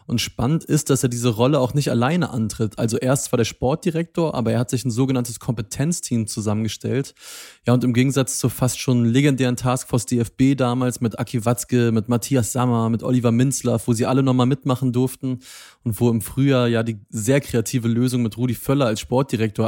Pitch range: 115-135 Hz